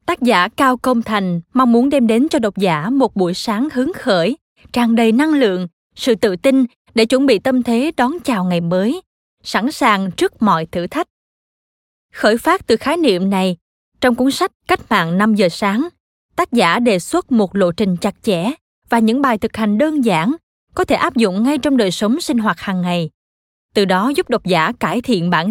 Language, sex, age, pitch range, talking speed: Vietnamese, female, 20-39, 195-260 Hz, 210 wpm